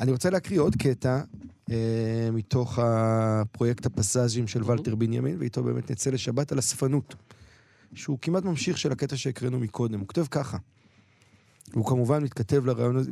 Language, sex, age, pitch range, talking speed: Hebrew, male, 40-59, 120-155 Hz, 145 wpm